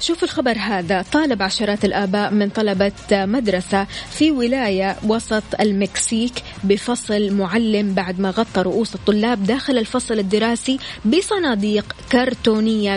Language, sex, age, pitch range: Arabic, female, 20-39, 200-250 Hz